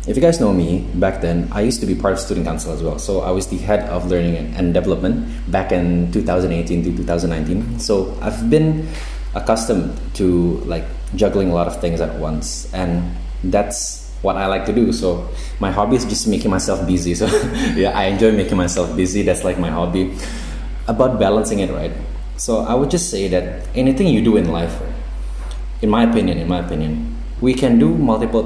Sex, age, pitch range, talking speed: male, 20-39, 85-100 Hz, 200 wpm